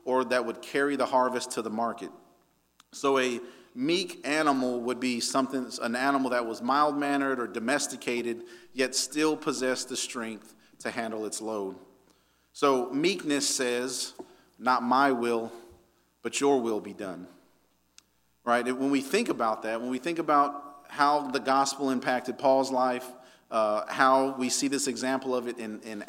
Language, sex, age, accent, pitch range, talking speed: English, male, 40-59, American, 120-150 Hz, 160 wpm